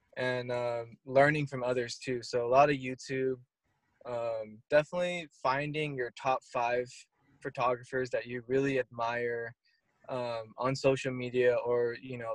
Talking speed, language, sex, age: 140 wpm, English, male, 20-39